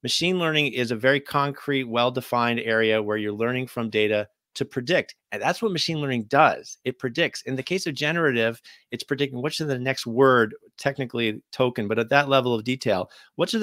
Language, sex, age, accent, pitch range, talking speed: English, male, 40-59, American, 110-135 Hz, 200 wpm